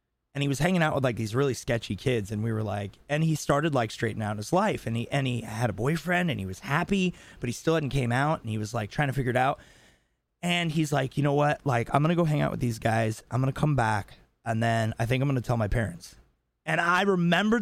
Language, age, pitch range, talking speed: English, 30-49, 120-165 Hz, 280 wpm